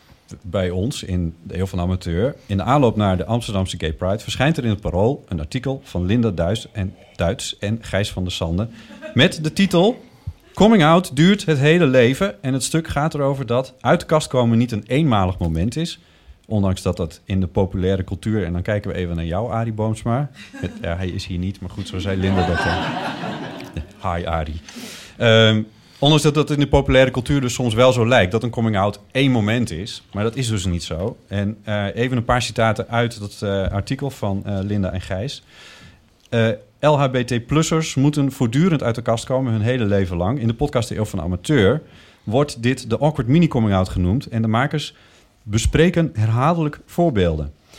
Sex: male